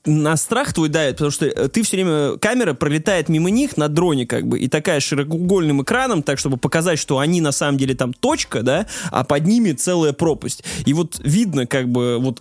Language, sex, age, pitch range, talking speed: Russian, male, 20-39, 135-185 Hz, 210 wpm